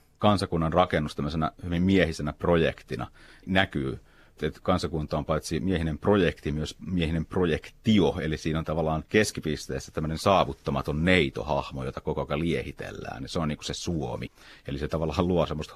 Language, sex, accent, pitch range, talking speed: Finnish, male, native, 75-95 Hz, 150 wpm